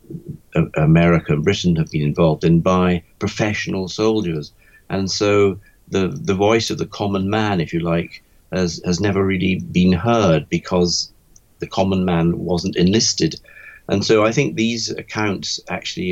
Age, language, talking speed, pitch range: 50-69, English, 155 wpm, 85-100 Hz